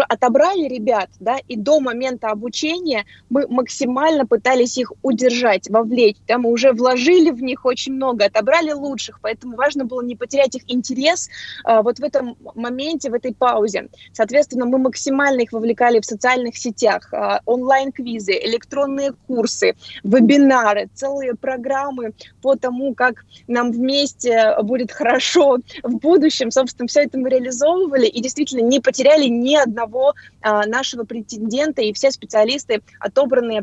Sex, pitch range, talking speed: female, 235-275 Hz, 145 wpm